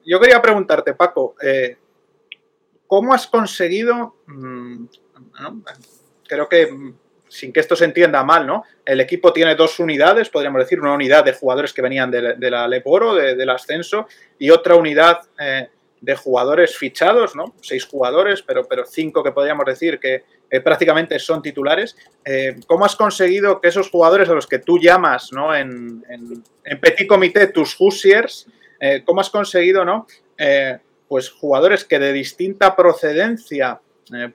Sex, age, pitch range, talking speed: male, 30-49, 130-185 Hz, 150 wpm